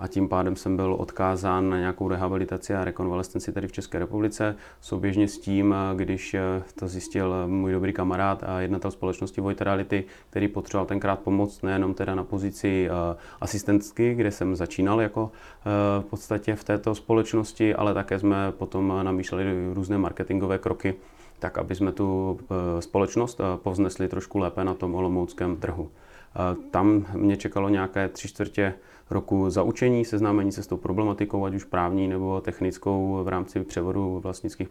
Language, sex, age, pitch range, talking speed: Czech, male, 30-49, 90-100 Hz, 150 wpm